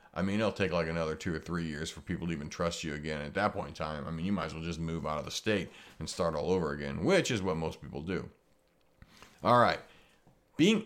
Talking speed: 265 wpm